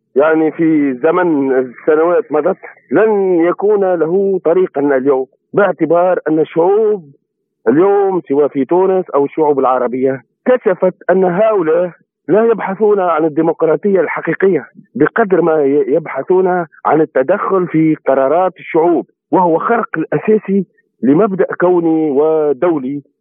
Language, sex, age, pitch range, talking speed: Arabic, male, 50-69, 160-210 Hz, 110 wpm